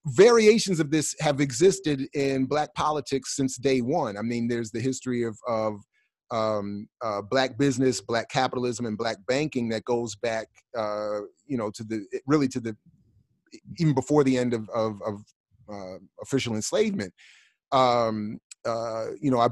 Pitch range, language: 115-140 Hz, English